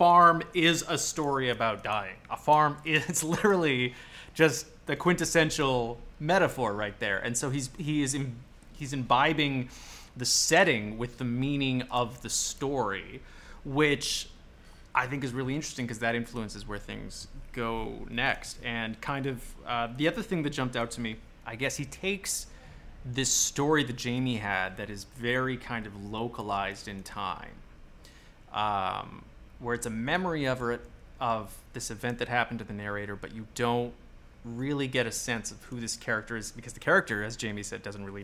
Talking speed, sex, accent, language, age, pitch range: 170 wpm, male, American, English, 20-39, 110-135 Hz